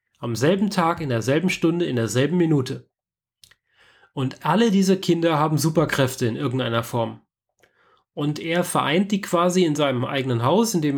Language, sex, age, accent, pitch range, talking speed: German, male, 30-49, German, 130-160 Hz, 155 wpm